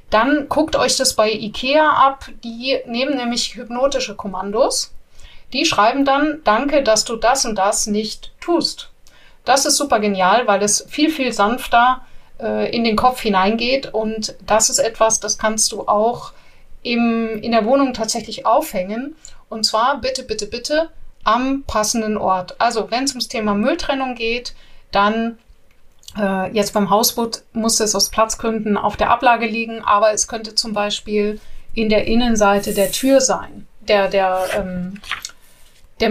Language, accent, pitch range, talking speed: German, German, 205-245 Hz, 150 wpm